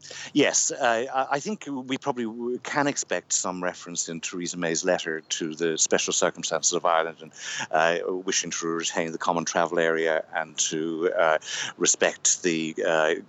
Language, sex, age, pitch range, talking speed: English, male, 60-79, 85-115 Hz, 160 wpm